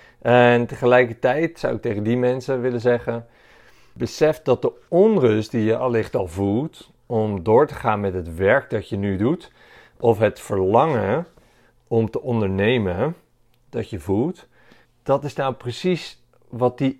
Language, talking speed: Dutch, 155 wpm